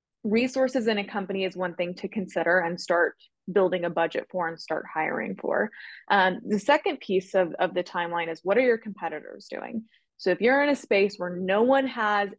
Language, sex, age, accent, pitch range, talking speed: English, female, 20-39, American, 175-215 Hz, 210 wpm